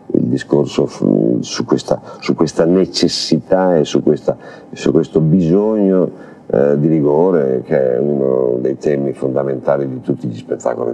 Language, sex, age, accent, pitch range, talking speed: Italian, male, 50-69, native, 70-80 Hz, 145 wpm